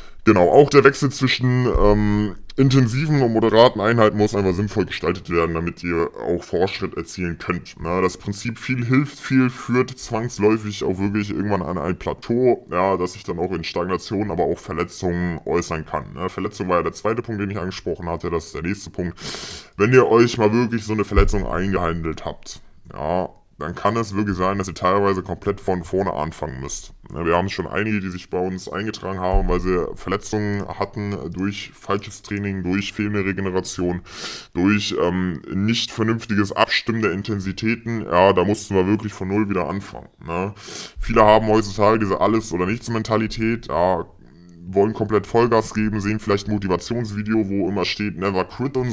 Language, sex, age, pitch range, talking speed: German, female, 10-29, 95-115 Hz, 175 wpm